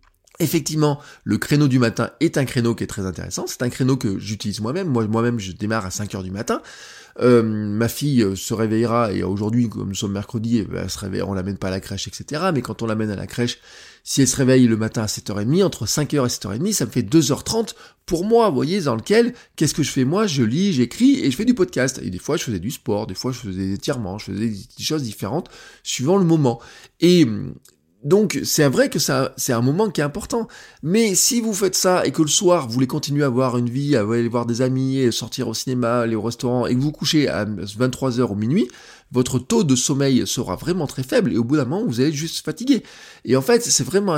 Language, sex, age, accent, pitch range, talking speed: French, male, 20-39, French, 115-160 Hz, 245 wpm